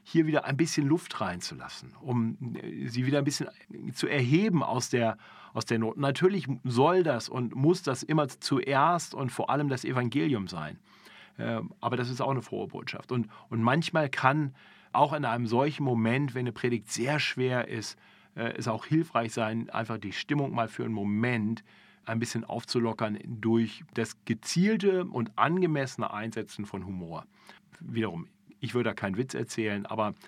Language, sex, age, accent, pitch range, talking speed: German, male, 40-59, German, 110-140 Hz, 165 wpm